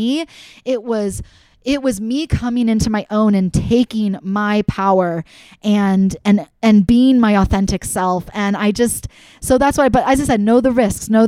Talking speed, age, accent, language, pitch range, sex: 180 wpm, 20-39, American, English, 190-230 Hz, female